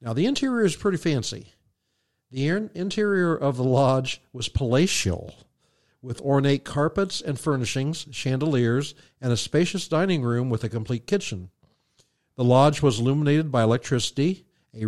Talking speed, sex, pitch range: 140 wpm, male, 115-150 Hz